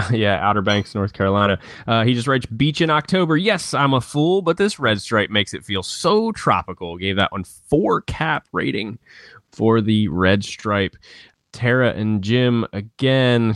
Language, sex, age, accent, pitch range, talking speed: English, male, 20-39, American, 95-135 Hz, 175 wpm